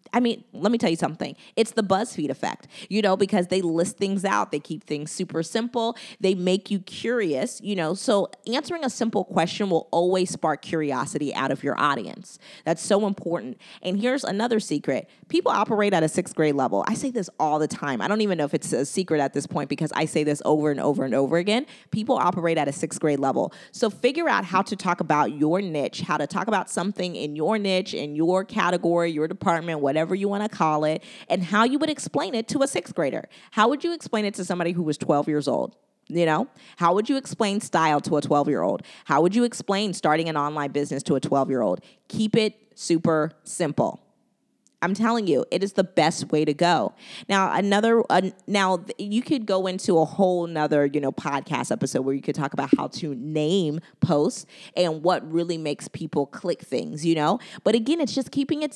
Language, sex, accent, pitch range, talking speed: English, female, American, 155-220 Hz, 225 wpm